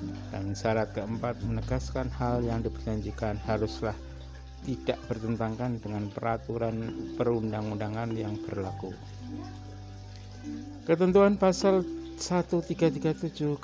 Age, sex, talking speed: 60-79, male, 80 wpm